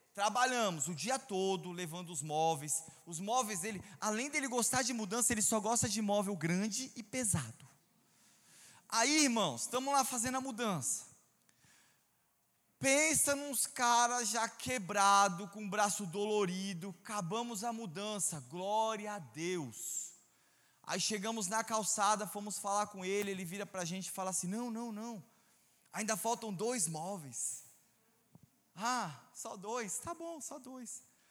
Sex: male